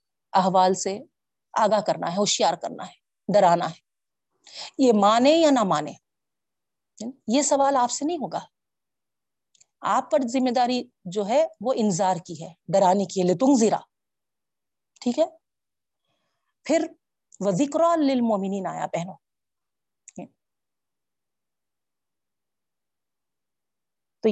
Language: Urdu